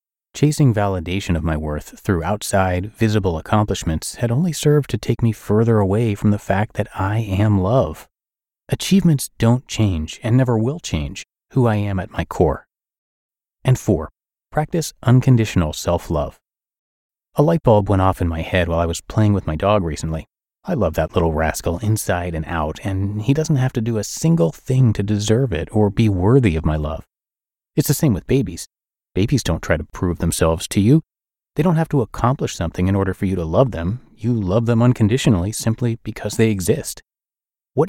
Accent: American